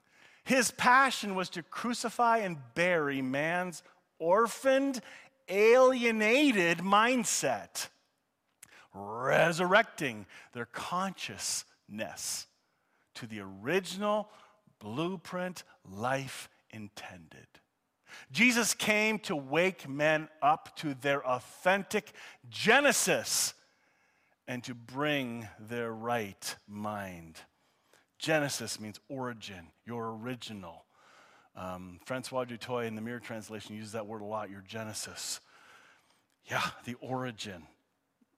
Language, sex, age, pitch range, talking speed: English, male, 40-59, 115-190 Hz, 90 wpm